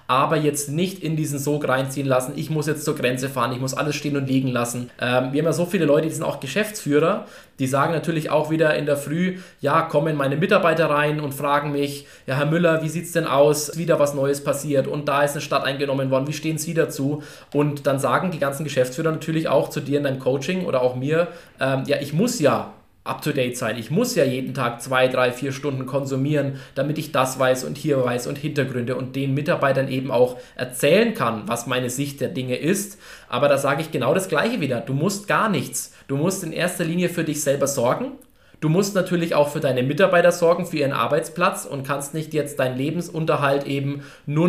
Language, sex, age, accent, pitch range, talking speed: German, male, 20-39, German, 135-160 Hz, 225 wpm